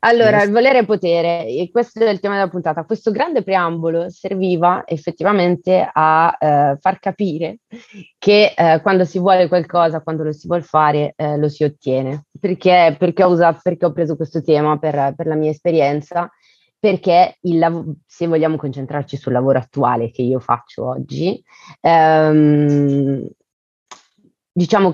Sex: female